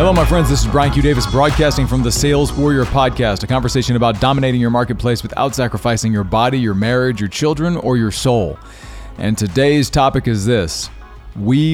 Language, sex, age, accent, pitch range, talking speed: English, male, 40-59, American, 105-135 Hz, 190 wpm